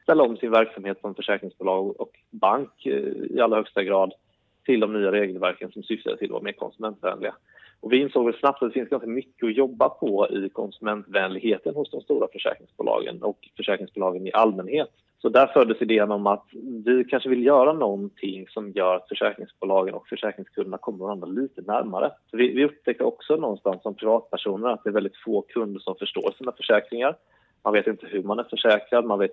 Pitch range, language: 100-130 Hz, Swedish